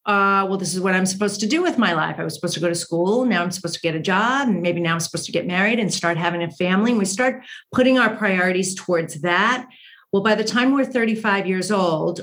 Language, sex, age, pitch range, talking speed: English, female, 40-59, 180-225 Hz, 270 wpm